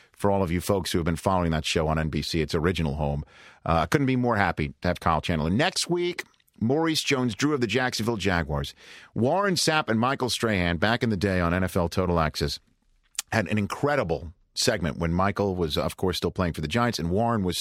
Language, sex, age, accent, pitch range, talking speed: English, male, 50-69, American, 85-120 Hz, 220 wpm